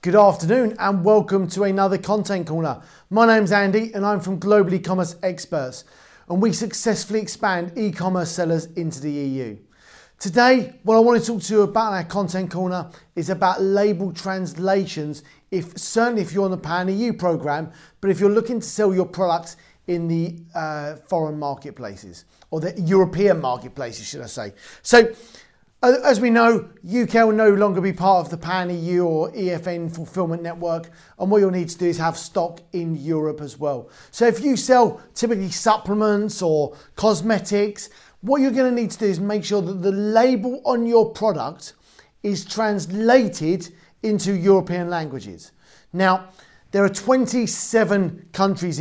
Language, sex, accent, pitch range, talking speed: English, male, British, 170-215 Hz, 170 wpm